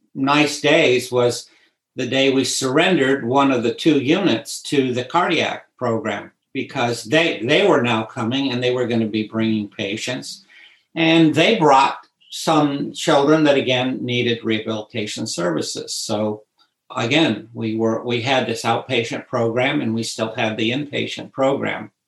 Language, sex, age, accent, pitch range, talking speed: English, male, 60-79, American, 115-135 Hz, 150 wpm